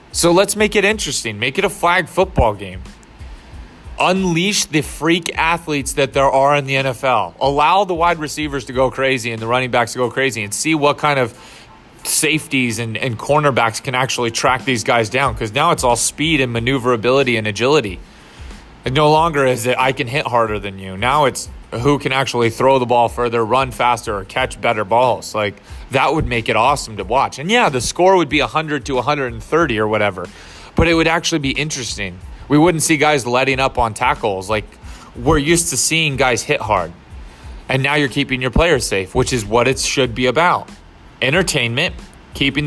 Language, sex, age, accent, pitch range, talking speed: English, male, 30-49, American, 120-150 Hz, 200 wpm